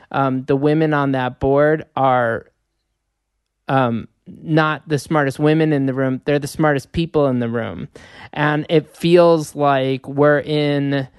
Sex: male